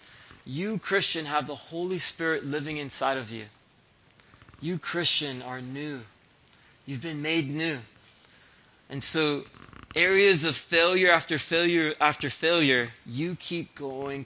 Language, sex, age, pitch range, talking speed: English, male, 20-39, 125-155 Hz, 125 wpm